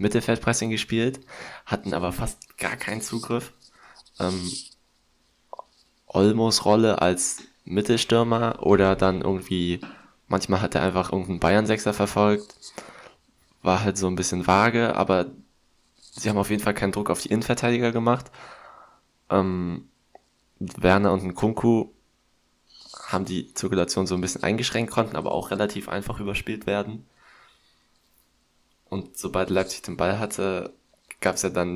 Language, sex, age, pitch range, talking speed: German, male, 20-39, 90-105 Hz, 130 wpm